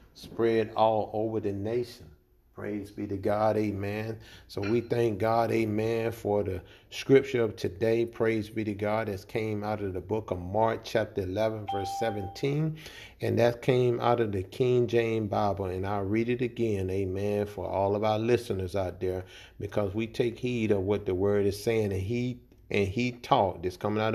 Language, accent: English, American